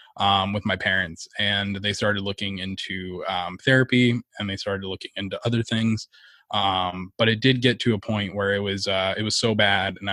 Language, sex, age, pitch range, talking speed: English, male, 20-39, 95-115 Hz, 205 wpm